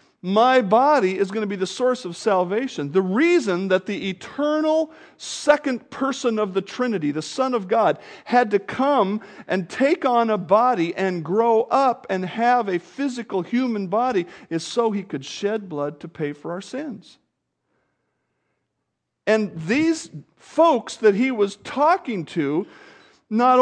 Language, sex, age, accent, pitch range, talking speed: English, male, 50-69, American, 185-250 Hz, 155 wpm